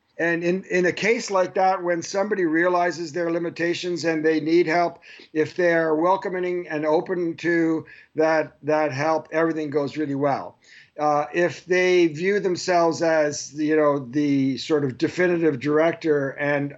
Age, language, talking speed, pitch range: 50-69, Swedish, 155 wpm, 150-175 Hz